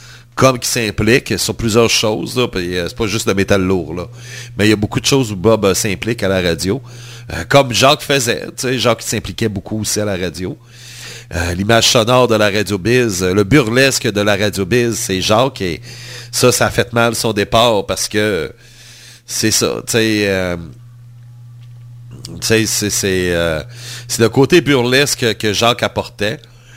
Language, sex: French, male